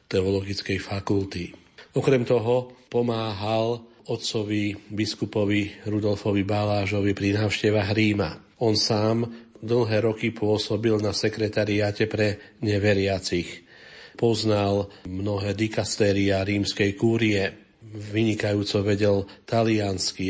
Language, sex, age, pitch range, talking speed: Slovak, male, 40-59, 100-110 Hz, 85 wpm